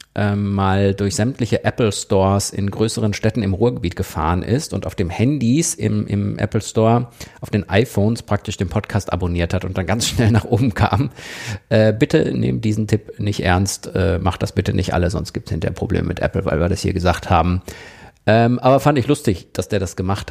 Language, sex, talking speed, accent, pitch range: German, male, 200 wpm, German, 95-120 Hz